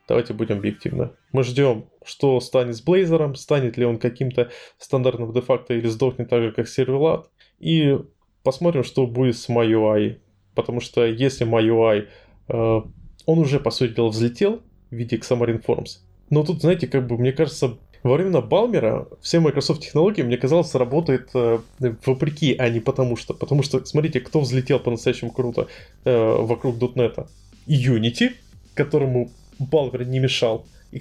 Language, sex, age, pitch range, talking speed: Russian, male, 20-39, 115-145 Hz, 150 wpm